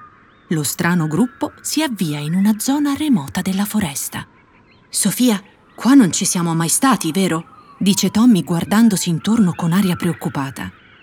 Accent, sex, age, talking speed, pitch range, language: native, female, 30-49, 140 wpm, 175-270 Hz, Italian